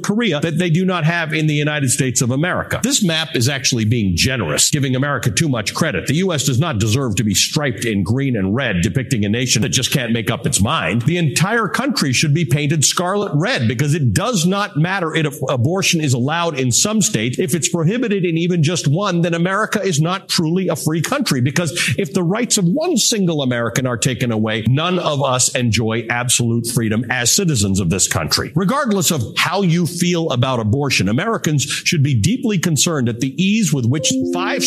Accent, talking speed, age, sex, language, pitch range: American, 210 wpm, 50-69, male, English, 125-170 Hz